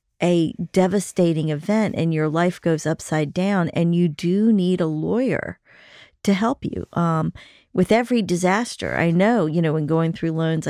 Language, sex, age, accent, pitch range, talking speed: English, female, 40-59, American, 160-195 Hz, 170 wpm